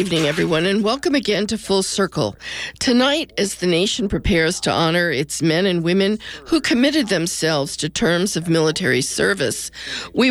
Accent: American